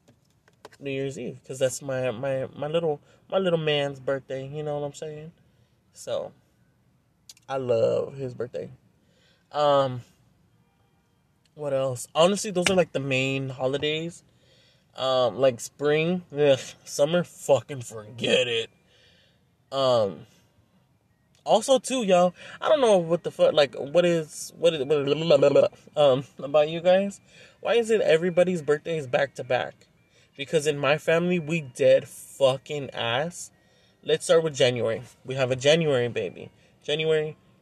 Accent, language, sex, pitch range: American, English, male, 130-175 Hz